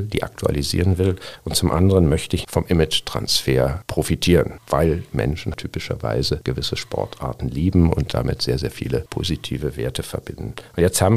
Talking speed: 150 wpm